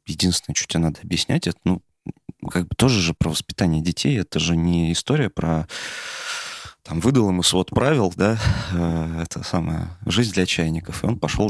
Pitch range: 80-100 Hz